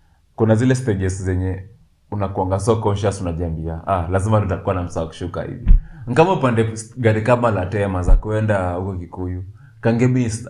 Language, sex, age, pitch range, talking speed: Swahili, male, 20-39, 90-120 Hz, 145 wpm